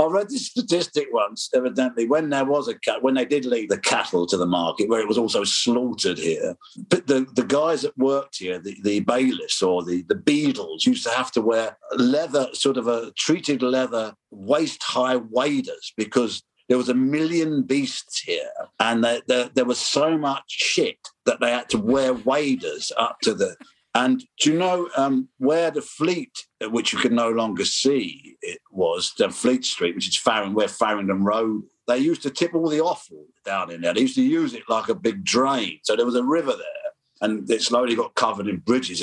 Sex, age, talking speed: male, 50-69, 205 wpm